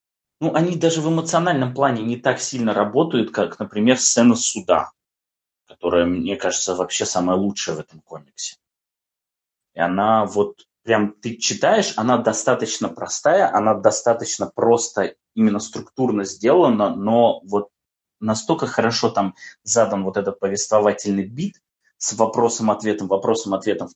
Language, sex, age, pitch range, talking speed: Russian, male, 20-39, 105-130 Hz, 130 wpm